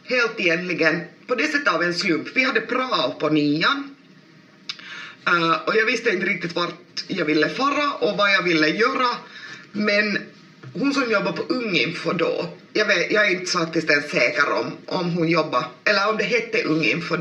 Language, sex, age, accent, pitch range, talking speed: Swedish, female, 30-49, Finnish, 155-200 Hz, 185 wpm